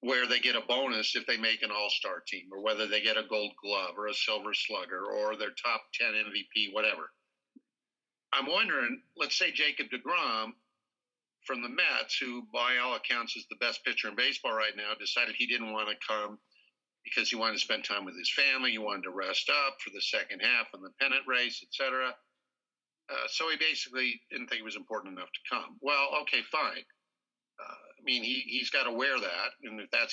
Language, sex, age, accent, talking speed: English, male, 50-69, American, 210 wpm